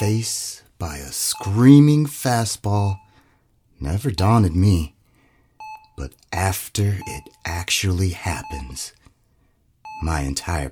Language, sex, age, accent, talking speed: English, male, 30-49, American, 85 wpm